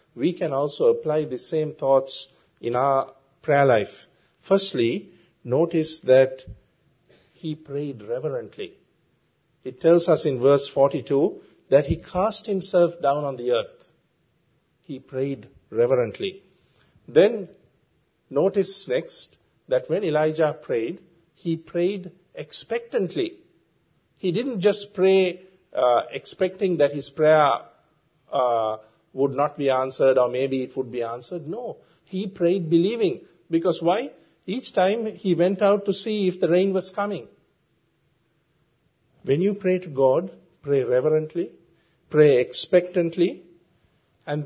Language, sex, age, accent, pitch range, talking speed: English, male, 50-69, Indian, 140-190 Hz, 125 wpm